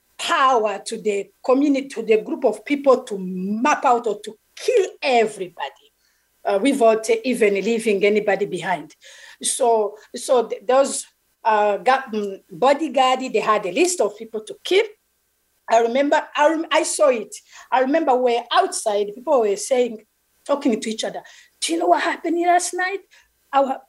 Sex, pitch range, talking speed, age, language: female, 230-330 Hz, 150 wpm, 50-69, English